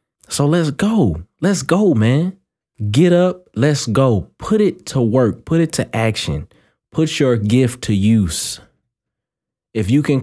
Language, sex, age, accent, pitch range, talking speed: English, male, 20-39, American, 95-145 Hz, 155 wpm